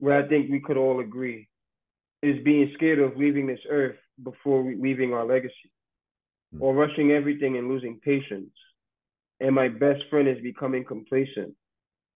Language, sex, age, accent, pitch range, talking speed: English, male, 20-39, American, 125-145 Hz, 155 wpm